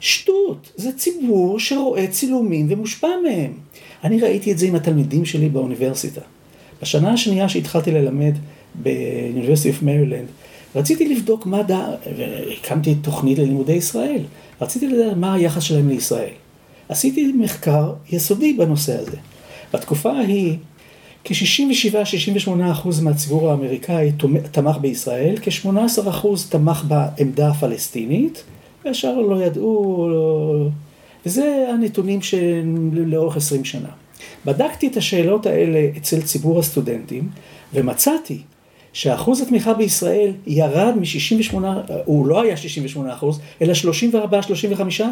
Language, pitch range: Hebrew, 150-215 Hz